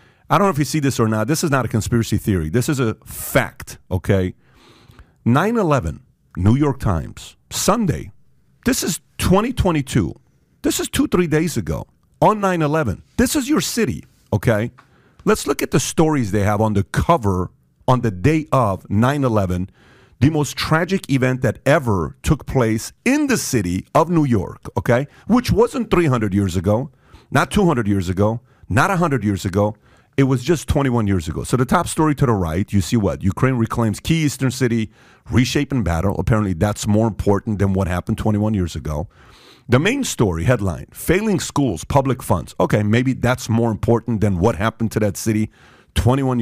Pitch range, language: 100-140 Hz, English